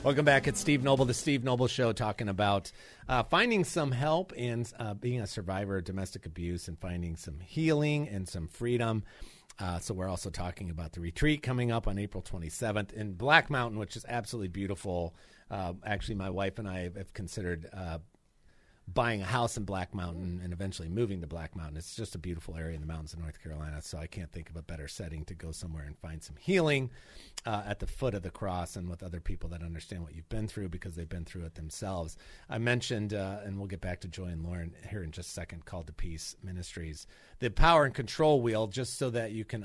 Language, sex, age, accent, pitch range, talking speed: English, male, 40-59, American, 90-115 Hz, 230 wpm